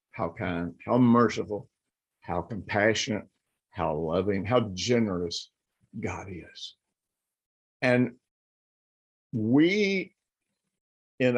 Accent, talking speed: American, 80 wpm